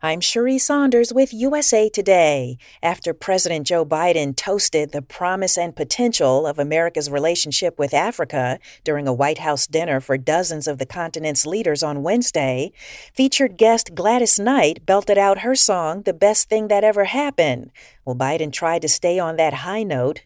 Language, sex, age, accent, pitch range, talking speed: English, female, 40-59, American, 145-195 Hz, 165 wpm